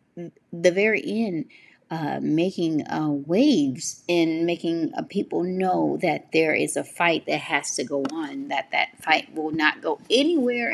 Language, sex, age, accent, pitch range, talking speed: English, female, 30-49, American, 145-185 Hz, 160 wpm